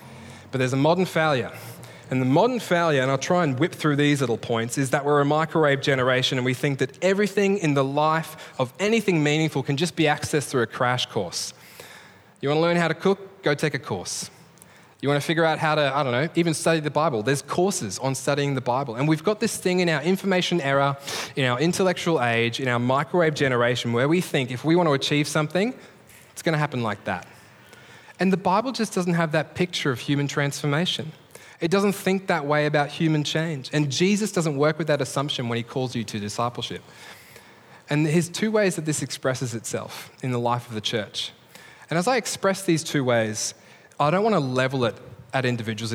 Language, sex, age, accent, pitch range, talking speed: English, male, 10-29, Australian, 130-170 Hz, 210 wpm